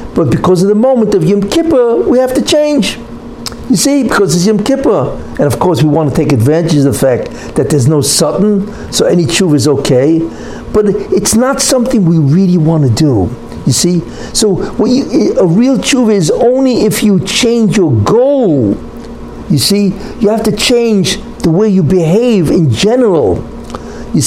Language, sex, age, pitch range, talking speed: English, male, 60-79, 145-215 Hz, 180 wpm